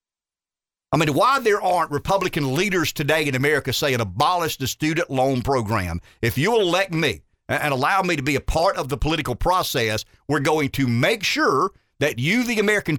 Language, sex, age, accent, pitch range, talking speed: English, male, 50-69, American, 130-190 Hz, 185 wpm